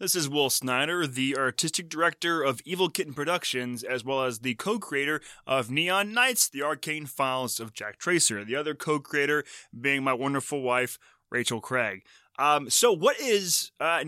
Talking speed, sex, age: 165 wpm, male, 20-39